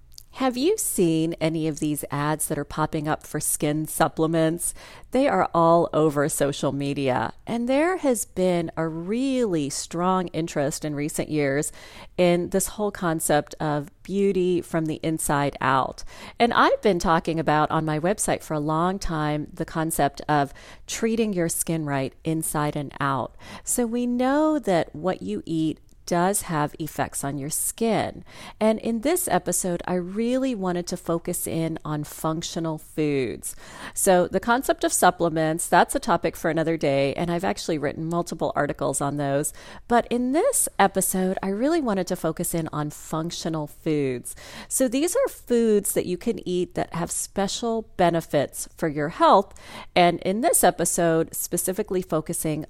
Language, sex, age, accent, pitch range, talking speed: English, female, 40-59, American, 155-190 Hz, 160 wpm